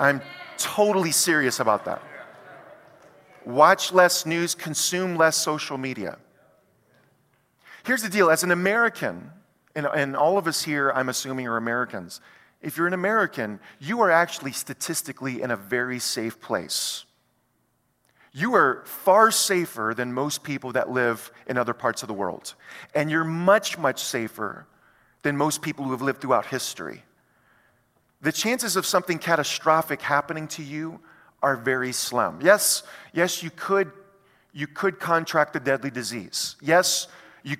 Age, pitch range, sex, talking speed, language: 40-59, 135-175 Hz, male, 145 wpm, English